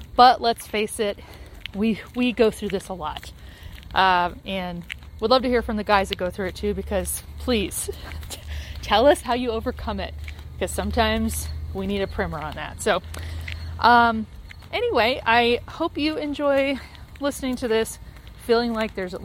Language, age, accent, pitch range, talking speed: English, 30-49, American, 180-255 Hz, 170 wpm